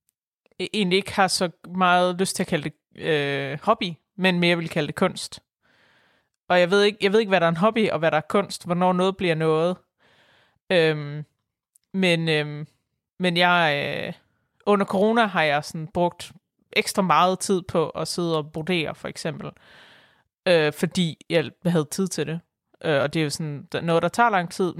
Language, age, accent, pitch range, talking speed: Danish, 30-49, native, 160-190 Hz, 190 wpm